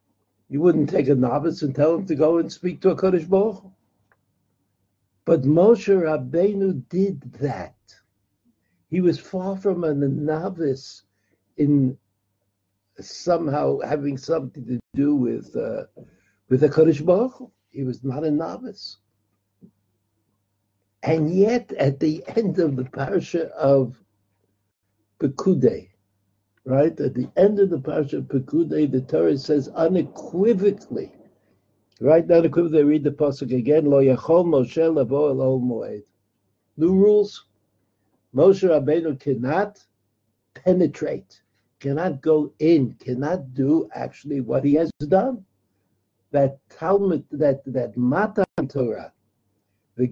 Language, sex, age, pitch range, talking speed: English, male, 60-79, 110-170 Hz, 110 wpm